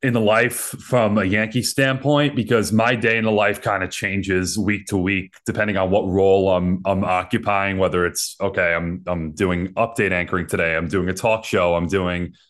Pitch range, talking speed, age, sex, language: 95-115 Hz, 200 wpm, 20-39, male, English